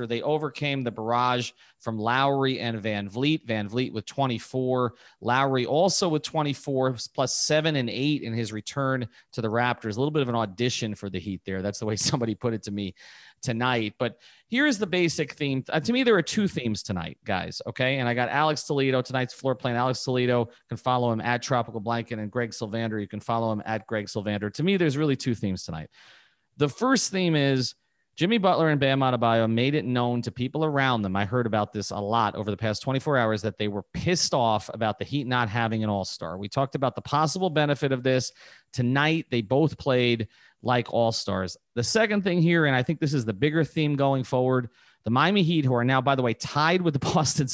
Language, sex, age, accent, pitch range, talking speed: English, male, 30-49, American, 115-145 Hz, 220 wpm